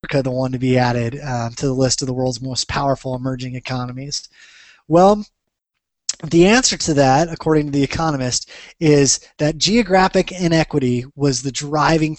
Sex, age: male, 20-39